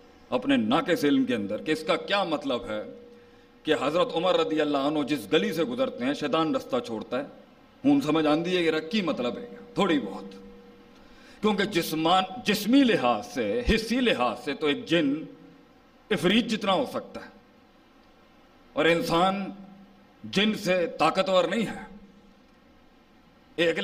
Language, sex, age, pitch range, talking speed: Urdu, male, 50-69, 180-260 Hz, 145 wpm